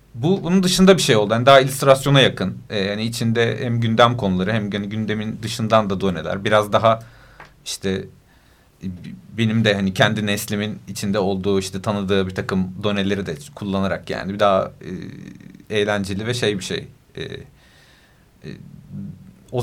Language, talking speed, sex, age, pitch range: Turkish, 140 wpm, male, 40-59, 100-135 Hz